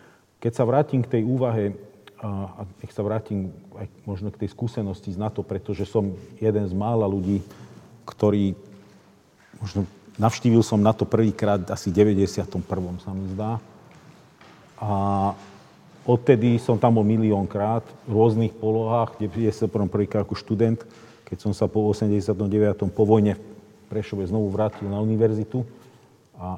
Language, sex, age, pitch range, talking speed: Slovak, male, 40-59, 100-110 Hz, 140 wpm